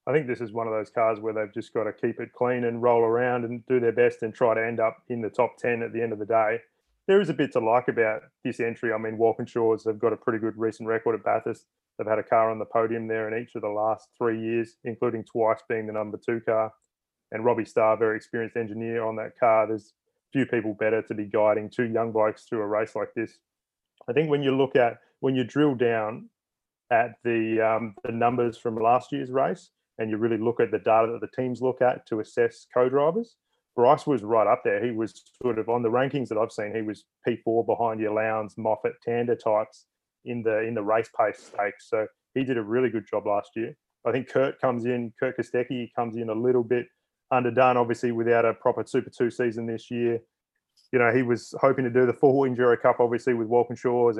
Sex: male